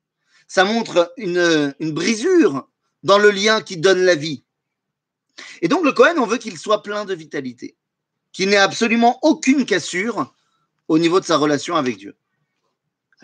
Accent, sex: French, male